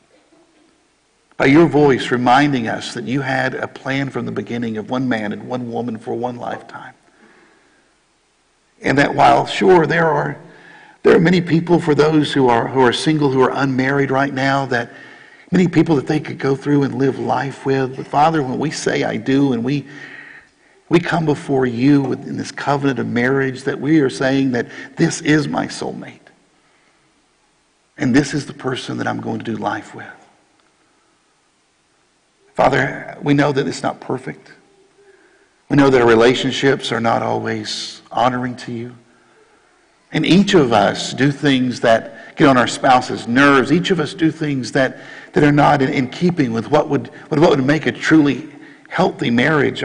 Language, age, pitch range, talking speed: English, 50-69, 125-155 Hz, 175 wpm